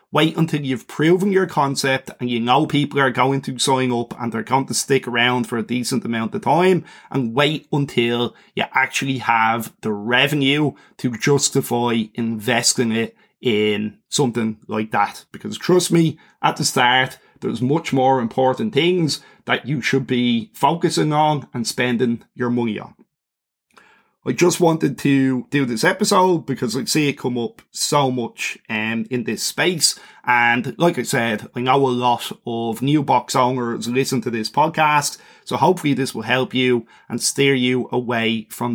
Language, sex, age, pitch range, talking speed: English, male, 30-49, 120-155 Hz, 170 wpm